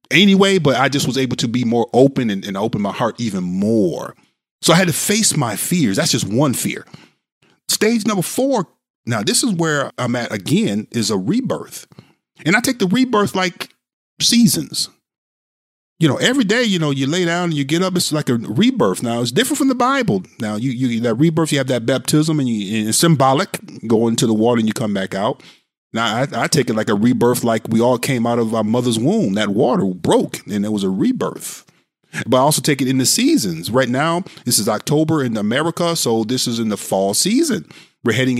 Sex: male